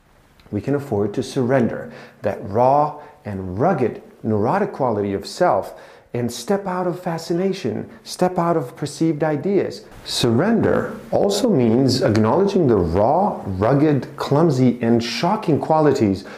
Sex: male